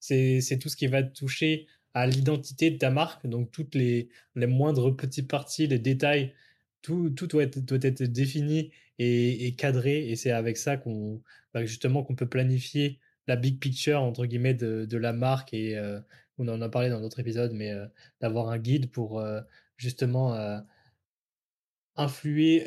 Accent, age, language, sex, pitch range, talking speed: French, 20-39, French, male, 120-140 Hz, 185 wpm